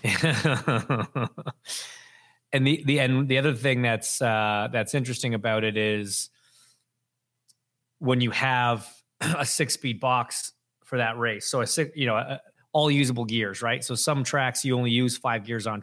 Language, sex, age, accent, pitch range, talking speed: English, male, 30-49, American, 115-130 Hz, 165 wpm